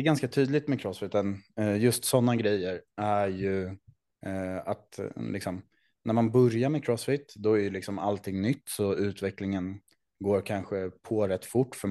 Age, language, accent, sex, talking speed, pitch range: 20-39, Swedish, Norwegian, male, 160 wpm, 90-110 Hz